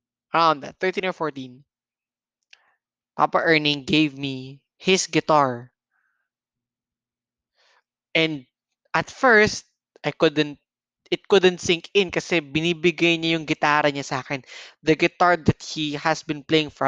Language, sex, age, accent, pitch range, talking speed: English, male, 20-39, Filipino, 135-170 Hz, 110 wpm